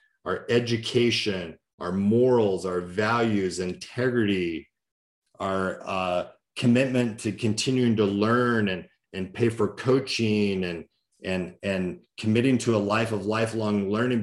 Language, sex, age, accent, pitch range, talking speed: English, male, 40-59, American, 95-115 Hz, 120 wpm